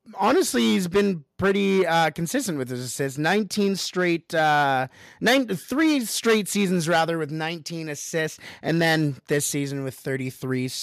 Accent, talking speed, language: American, 145 wpm, English